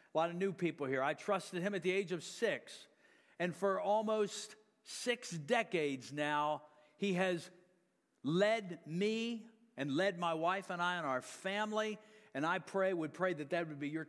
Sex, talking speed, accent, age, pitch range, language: male, 185 wpm, American, 50-69, 155-215 Hz, English